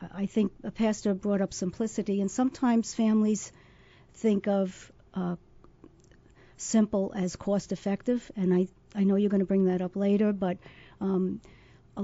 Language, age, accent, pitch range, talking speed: English, 50-69, American, 185-215 Hz, 150 wpm